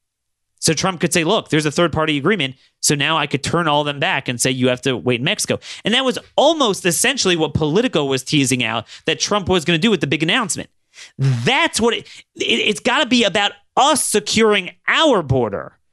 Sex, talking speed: male, 215 wpm